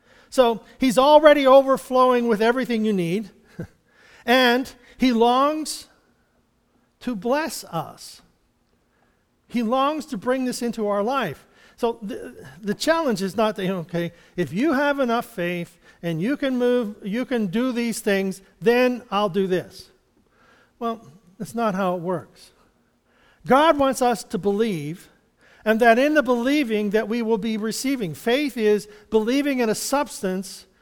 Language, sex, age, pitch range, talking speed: English, male, 50-69, 210-260 Hz, 145 wpm